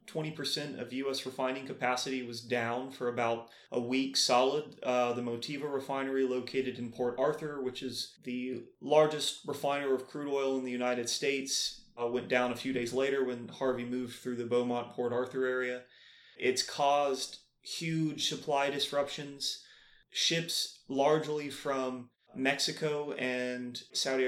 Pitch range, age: 125-145 Hz, 30-49